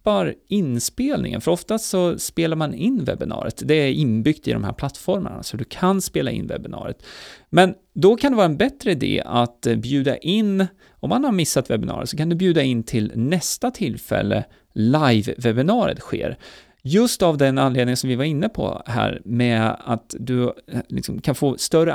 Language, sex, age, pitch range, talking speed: Swedish, male, 30-49, 120-175 Hz, 175 wpm